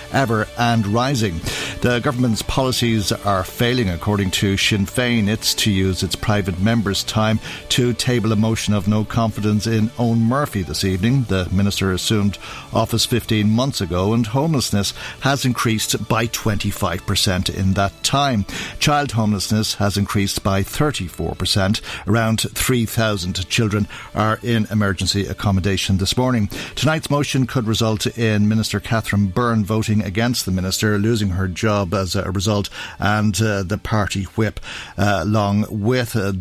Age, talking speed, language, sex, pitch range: 60-79, 145 wpm, English, male, 100-120 Hz